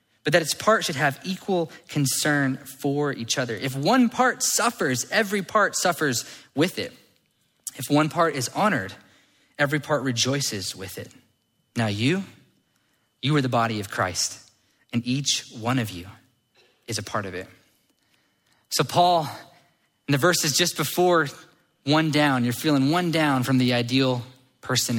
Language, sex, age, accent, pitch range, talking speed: English, male, 20-39, American, 120-175 Hz, 155 wpm